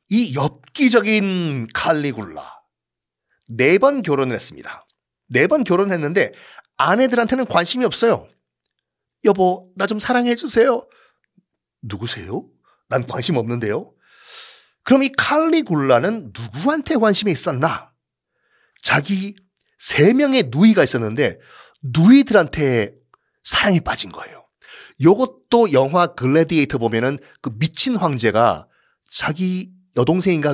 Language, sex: Korean, male